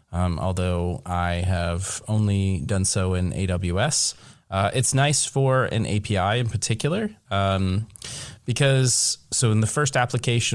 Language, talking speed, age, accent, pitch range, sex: English, 135 wpm, 30-49, American, 90-120 Hz, male